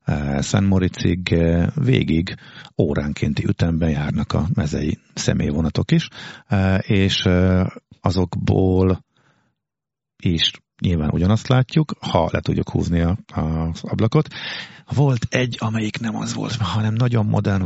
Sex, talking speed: male, 110 wpm